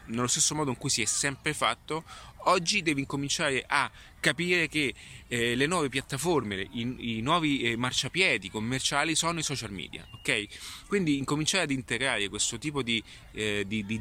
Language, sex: Italian, male